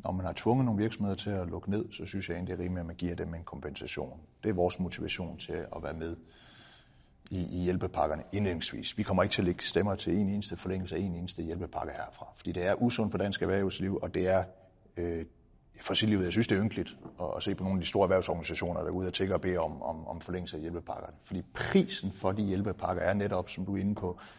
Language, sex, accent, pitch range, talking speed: Danish, male, native, 90-105 Hz, 255 wpm